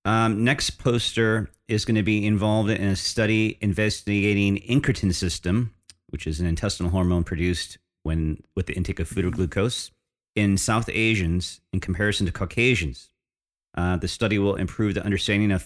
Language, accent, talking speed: English, American, 165 wpm